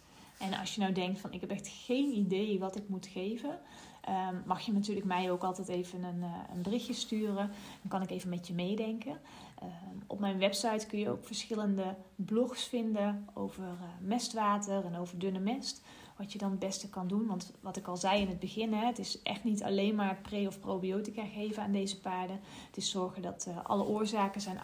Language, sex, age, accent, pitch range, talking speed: Dutch, female, 30-49, Dutch, 180-215 Hz, 200 wpm